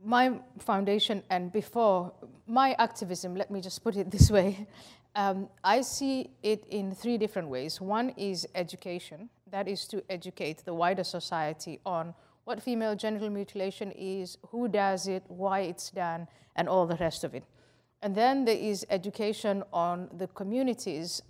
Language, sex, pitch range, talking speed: English, female, 180-215 Hz, 160 wpm